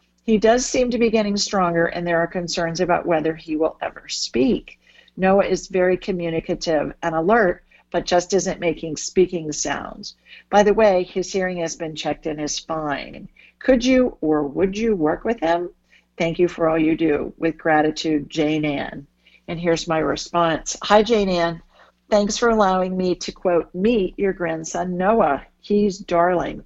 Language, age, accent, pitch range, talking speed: English, 50-69, American, 165-200 Hz, 175 wpm